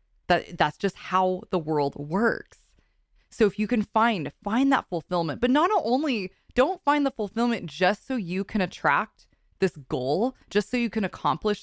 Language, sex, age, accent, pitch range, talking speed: English, female, 20-39, American, 170-230 Hz, 175 wpm